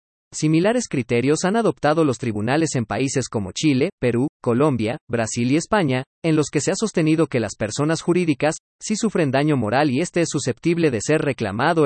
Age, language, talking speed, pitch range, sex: 40-59, Spanish, 180 wpm, 120-165 Hz, male